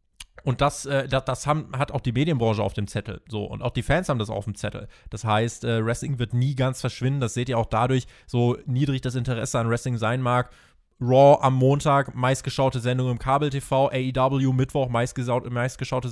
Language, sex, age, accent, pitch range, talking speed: German, male, 20-39, German, 120-145 Hz, 200 wpm